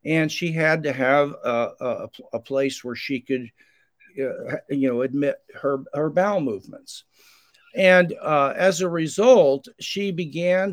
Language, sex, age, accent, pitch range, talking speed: English, male, 50-69, American, 140-185 Hz, 145 wpm